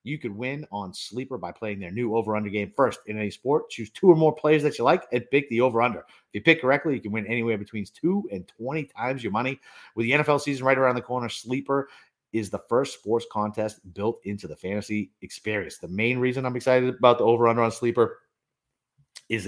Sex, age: male, 30-49